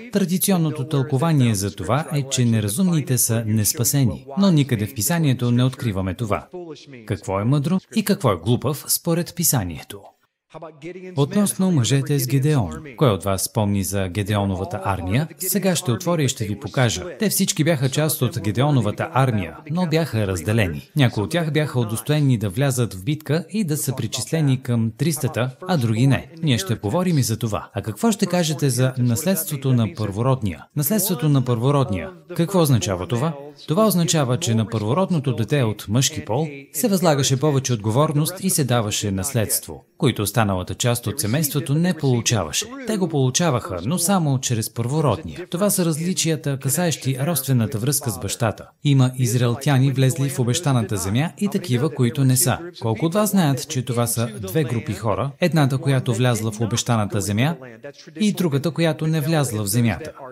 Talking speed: 160 wpm